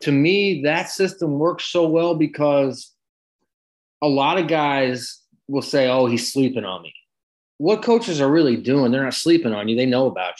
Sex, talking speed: male, 185 wpm